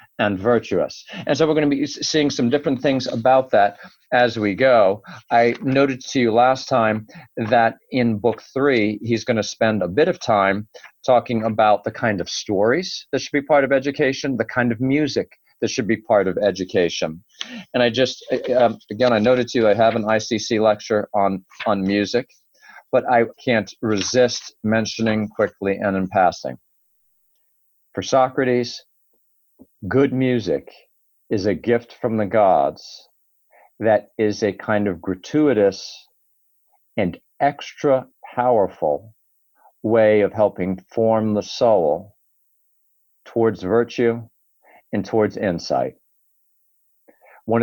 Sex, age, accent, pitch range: male, 40-59, American, 105-130 Hz